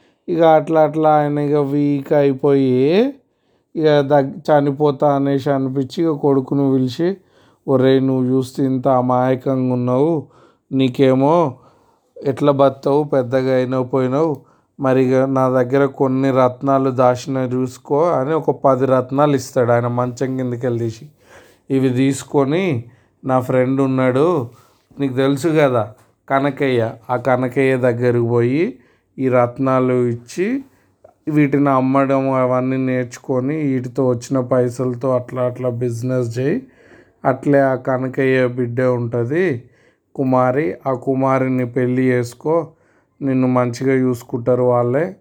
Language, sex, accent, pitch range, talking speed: Telugu, male, native, 125-145 Hz, 110 wpm